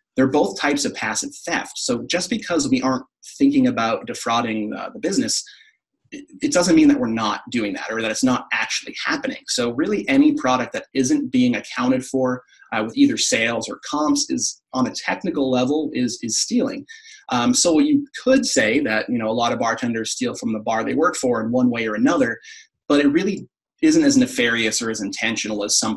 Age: 30-49